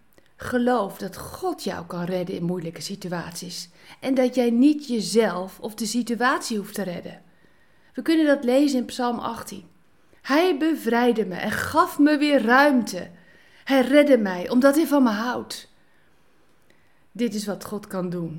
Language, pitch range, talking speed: Dutch, 180-265 Hz, 160 wpm